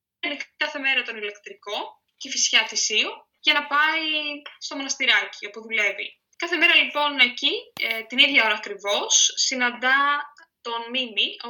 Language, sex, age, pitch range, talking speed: Greek, female, 10-29, 210-275 Hz, 140 wpm